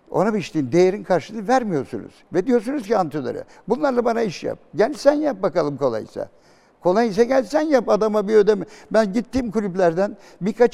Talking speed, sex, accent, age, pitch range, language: 170 wpm, male, native, 60-79, 165-220 Hz, Turkish